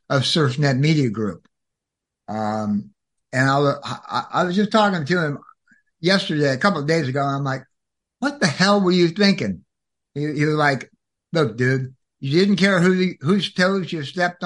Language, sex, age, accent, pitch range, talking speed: English, male, 60-79, American, 130-175 Hz, 185 wpm